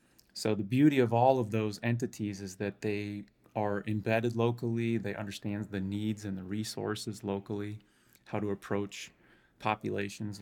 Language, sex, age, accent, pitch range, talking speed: English, male, 30-49, American, 100-110 Hz, 150 wpm